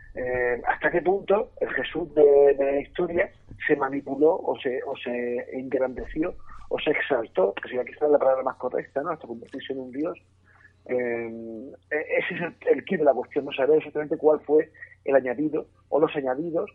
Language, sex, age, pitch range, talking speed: Spanish, male, 40-59, 125-175 Hz, 185 wpm